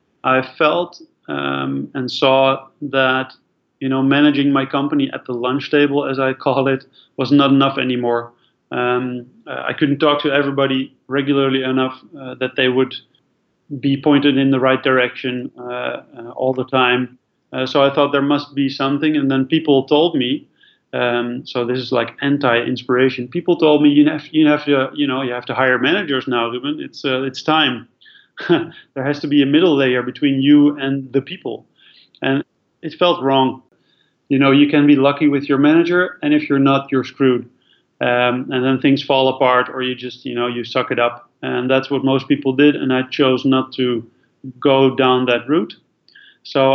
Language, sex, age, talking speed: English, male, 30-49, 190 wpm